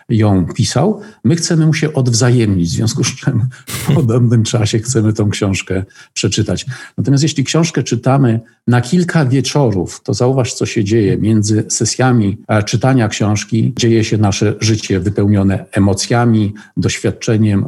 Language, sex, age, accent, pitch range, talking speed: Polish, male, 50-69, native, 105-125 Hz, 140 wpm